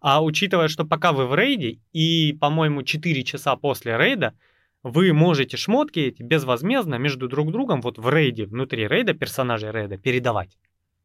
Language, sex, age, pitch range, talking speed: Russian, male, 20-39, 110-155 Hz, 155 wpm